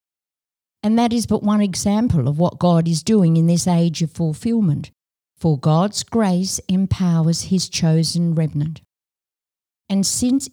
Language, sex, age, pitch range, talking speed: English, female, 50-69, 150-190 Hz, 140 wpm